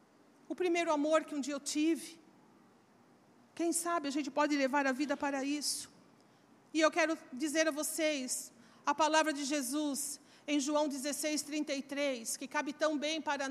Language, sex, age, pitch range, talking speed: Portuguese, female, 40-59, 290-390 Hz, 165 wpm